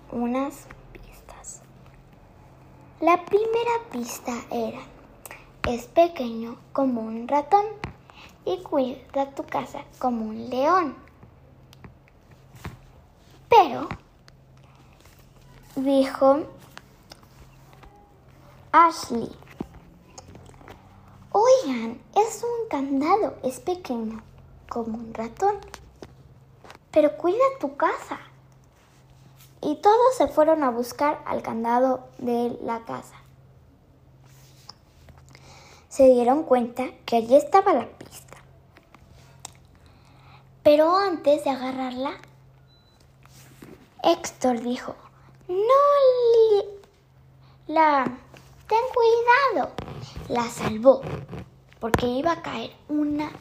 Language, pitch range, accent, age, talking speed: Spanish, 240-335 Hz, Mexican, 20-39, 80 wpm